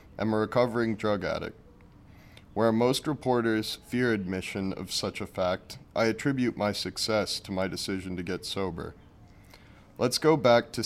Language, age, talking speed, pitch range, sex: English, 30-49, 160 wpm, 95-115 Hz, male